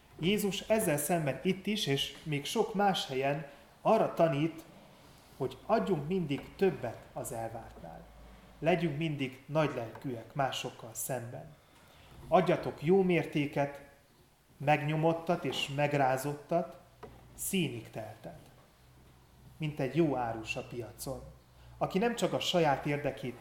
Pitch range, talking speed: 125-160 Hz, 110 wpm